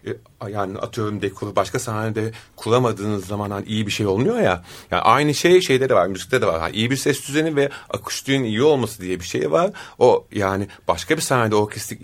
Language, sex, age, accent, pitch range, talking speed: Turkish, male, 40-59, native, 105-140 Hz, 205 wpm